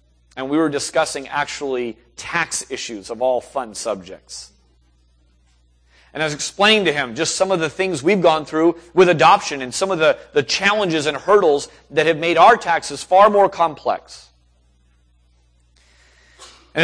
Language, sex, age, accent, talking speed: English, male, 30-49, American, 155 wpm